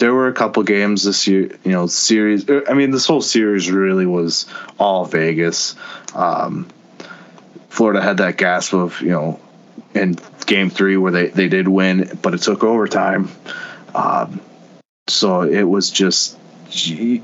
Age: 20-39